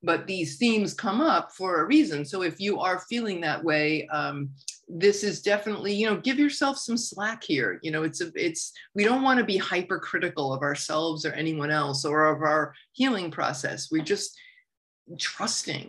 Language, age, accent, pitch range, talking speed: English, 40-59, American, 155-230 Hz, 185 wpm